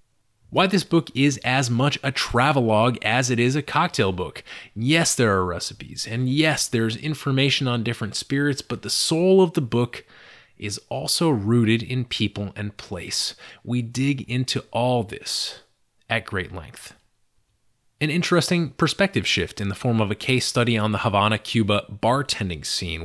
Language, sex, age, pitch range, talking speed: English, male, 30-49, 105-135 Hz, 165 wpm